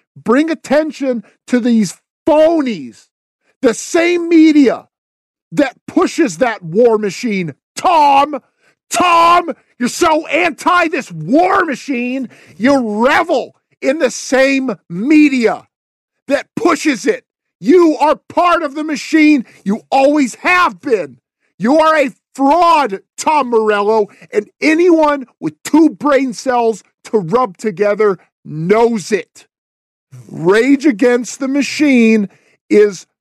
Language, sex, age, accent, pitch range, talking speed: English, male, 50-69, American, 220-300 Hz, 110 wpm